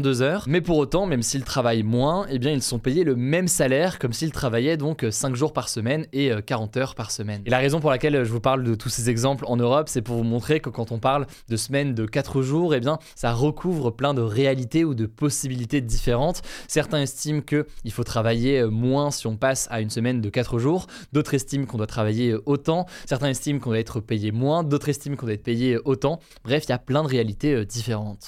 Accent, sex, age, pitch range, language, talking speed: French, male, 20-39, 115-145 Hz, French, 240 wpm